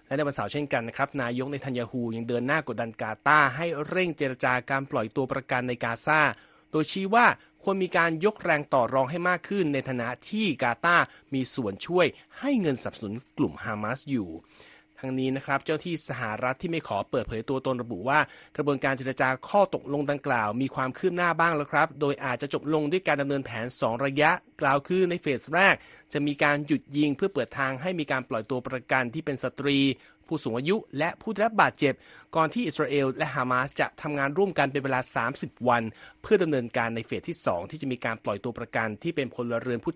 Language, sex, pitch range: Thai, male, 125-160 Hz